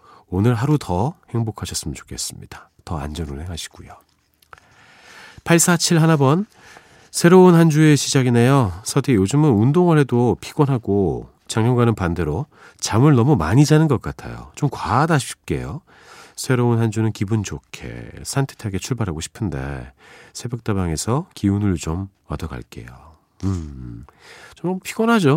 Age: 40-59